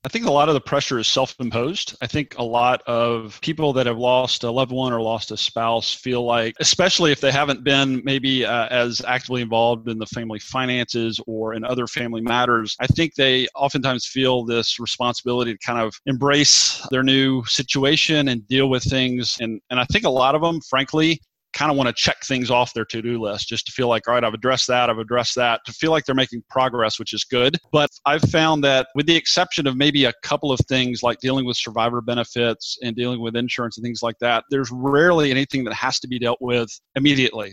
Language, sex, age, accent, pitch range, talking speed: English, male, 30-49, American, 120-135 Hz, 225 wpm